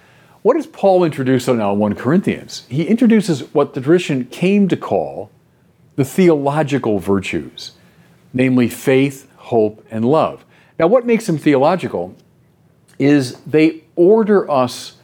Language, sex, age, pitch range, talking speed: English, male, 50-69, 115-155 Hz, 130 wpm